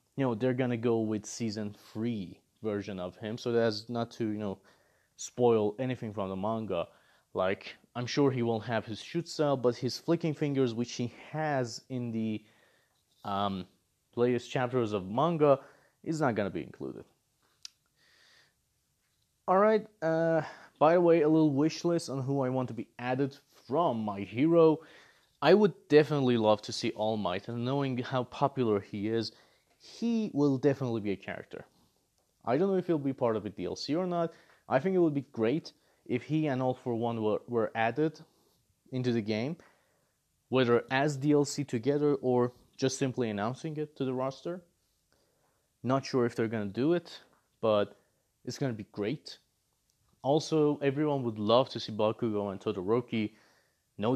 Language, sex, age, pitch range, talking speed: English, male, 30-49, 110-145 Hz, 170 wpm